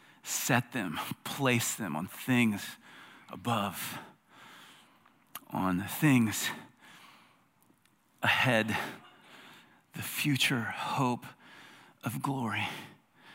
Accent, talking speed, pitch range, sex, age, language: American, 65 wpm, 120-145 Hz, male, 40-59, English